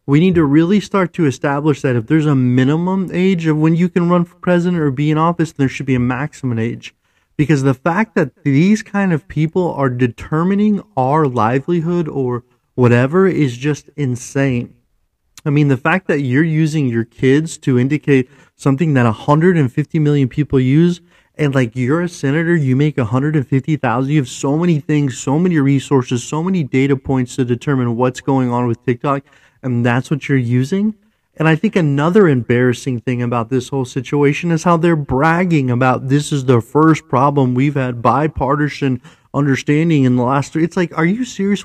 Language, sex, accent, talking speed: English, male, American, 185 wpm